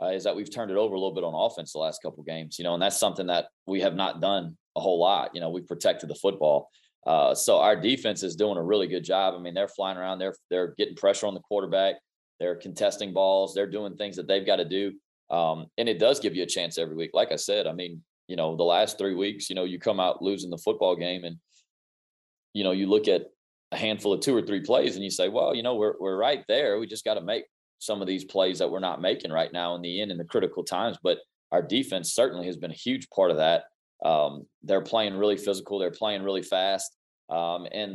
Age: 30-49